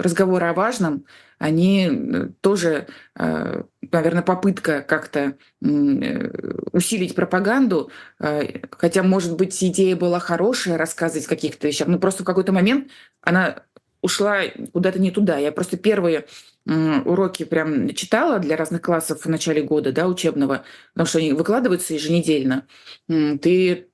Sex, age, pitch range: female, 20-39, 155-190 Hz